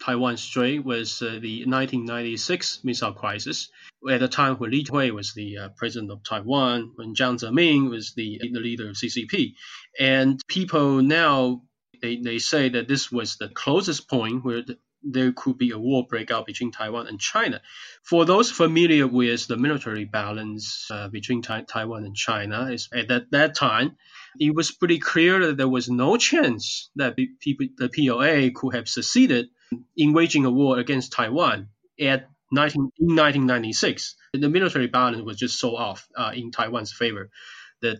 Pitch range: 115-140 Hz